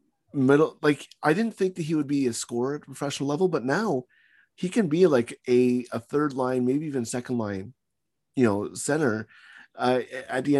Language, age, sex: English, 30-49, male